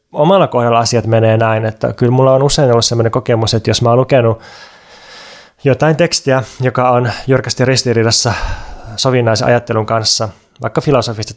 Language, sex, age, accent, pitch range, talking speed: Finnish, male, 20-39, native, 115-145 Hz, 155 wpm